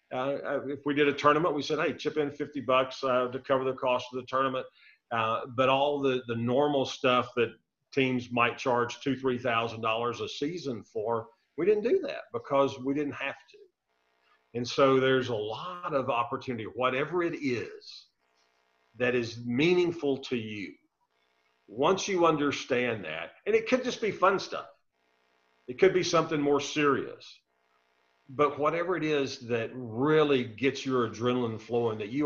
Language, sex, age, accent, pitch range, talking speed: English, male, 50-69, American, 120-150 Hz, 165 wpm